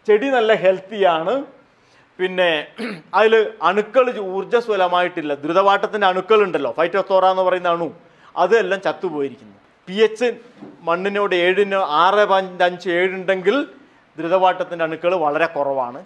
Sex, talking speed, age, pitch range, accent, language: male, 105 wpm, 30-49, 175-225 Hz, native, Malayalam